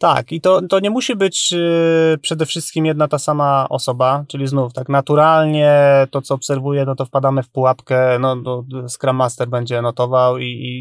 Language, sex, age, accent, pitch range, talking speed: Polish, male, 20-39, native, 130-145 Hz, 180 wpm